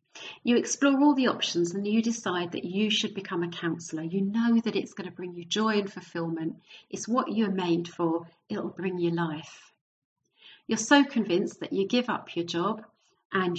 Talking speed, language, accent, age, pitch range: 195 wpm, English, British, 40-59, 175-230 Hz